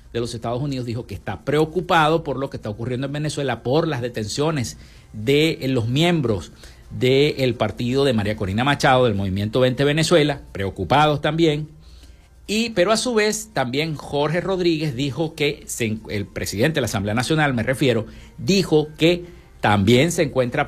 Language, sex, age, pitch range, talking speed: Spanish, male, 50-69, 105-155 Hz, 160 wpm